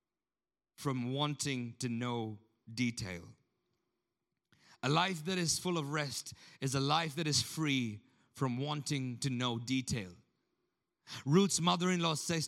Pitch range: 135-160 Hz